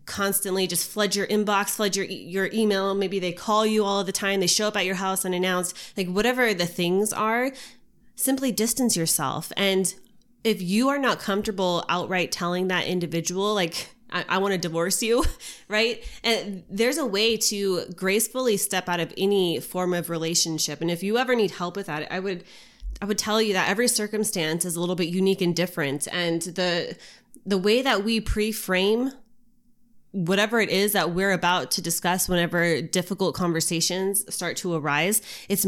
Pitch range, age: 175-210 Hz, 20-39